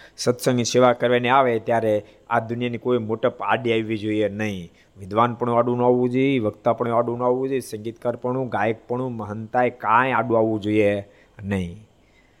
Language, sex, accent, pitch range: Gujarati, male, native, 105-150 Hz